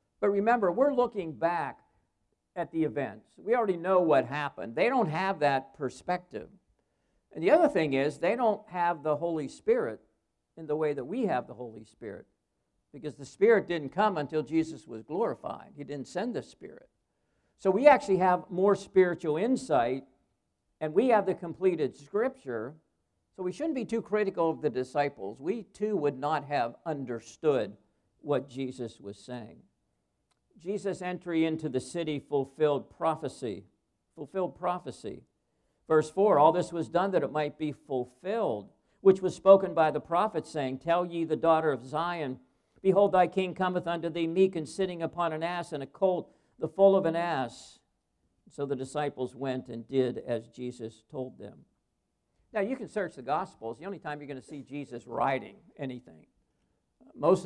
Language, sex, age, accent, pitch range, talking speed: English, male, 60-79, American, 135-185 Hz, 170 wpm